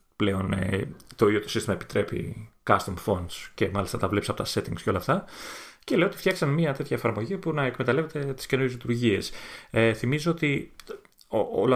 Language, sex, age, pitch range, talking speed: Greek, male, 30-49, 100-145 Hz, 175 wpm